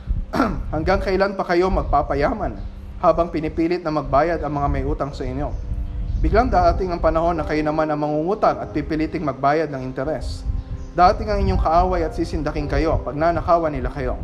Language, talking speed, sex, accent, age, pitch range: Filipino, 170 wpm, male, native, 20-39, 140-170 Hz